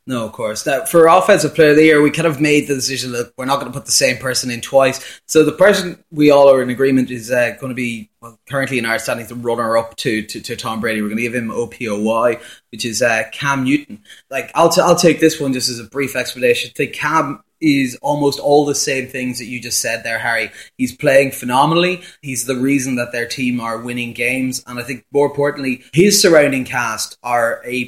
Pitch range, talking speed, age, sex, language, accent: 115-140 Hz, 240 wpm, 20-39, male, English, Irish